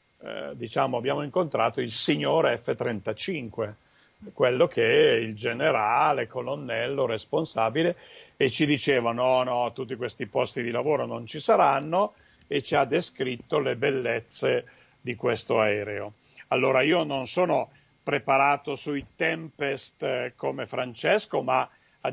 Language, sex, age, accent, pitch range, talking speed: Italian, male, 50-69, native, 125-175 Hz, 125 wpm